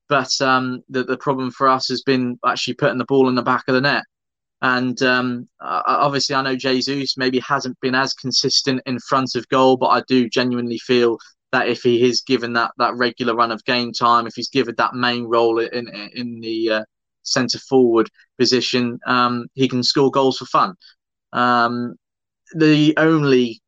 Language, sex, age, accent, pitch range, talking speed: English, male, 20-39, British, 115-130 Hz, 185 wpm